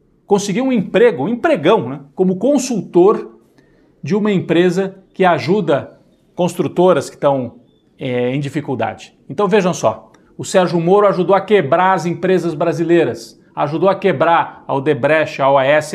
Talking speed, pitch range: 140 wpm, 150-205 Hz